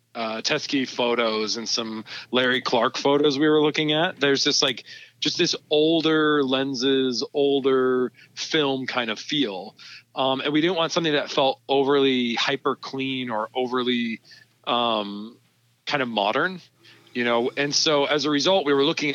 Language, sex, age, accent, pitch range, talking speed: English, male, 40-59, American, 120-145 Hz, 160 wpm